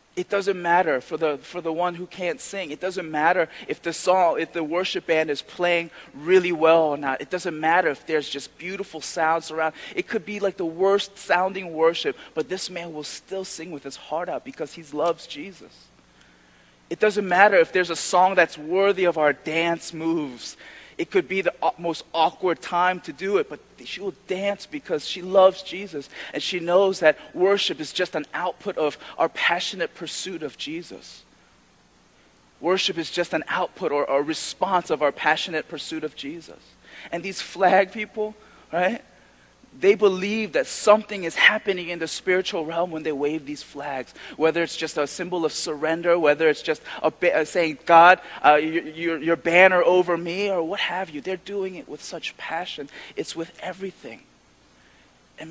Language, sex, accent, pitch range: Korean, male, American, 155-185 Hz